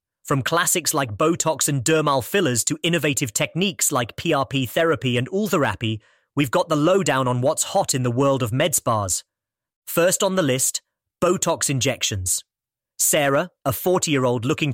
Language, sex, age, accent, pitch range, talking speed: English, male, 30-49, British, 125-165 Hz, 155 wpm